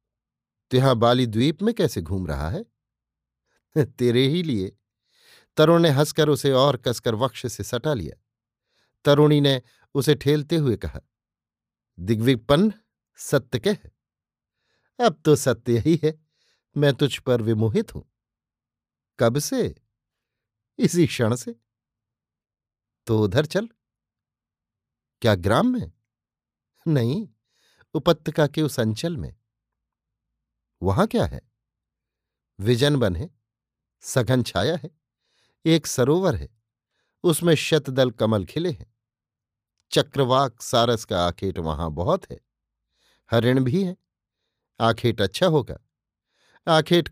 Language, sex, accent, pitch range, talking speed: Hindi, male, native, 110-150 Hz, 115 wpm